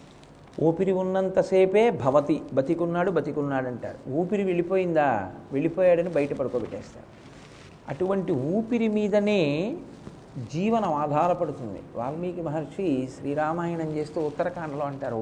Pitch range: 150-200 Hz